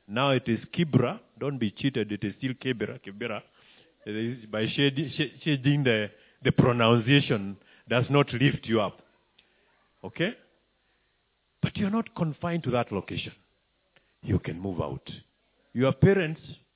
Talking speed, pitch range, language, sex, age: 140 wpm, 115-150 Hz, English, male, 50-69